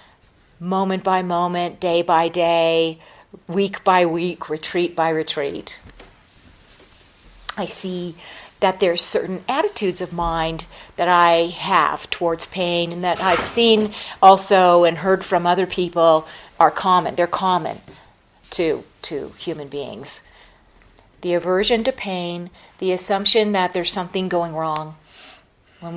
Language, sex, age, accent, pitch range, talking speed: English, female, 40-59, American, 165-190 Hz, 125 wpm